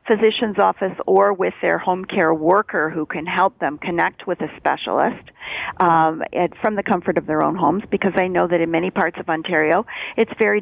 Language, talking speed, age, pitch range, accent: English, 200 wpm, 50-69, 165-195 Hz, American